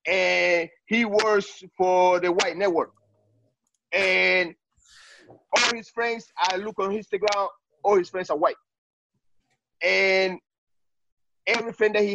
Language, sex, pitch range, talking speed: English, male, 185-255 Hz, 120 wpm